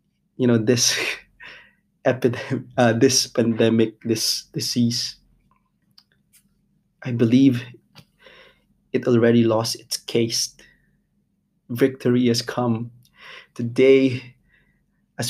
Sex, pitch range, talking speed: male, 120-135 Hz, 80 wpm